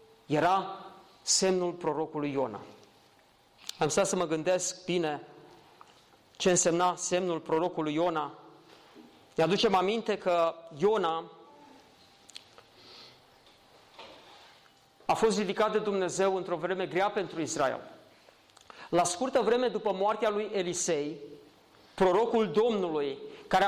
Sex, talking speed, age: male, 105 wpm, 40-59